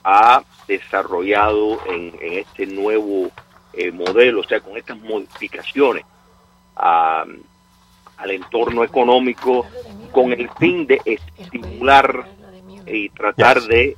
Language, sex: English, male